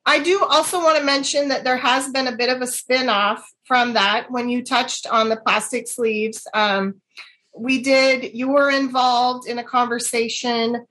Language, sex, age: English, female, 30-49